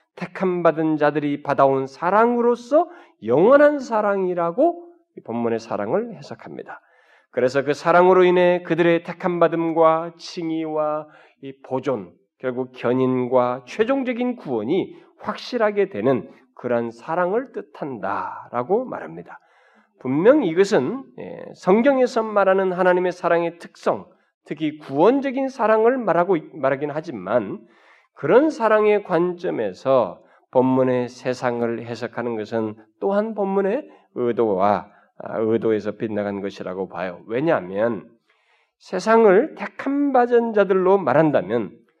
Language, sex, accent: Korean, male, native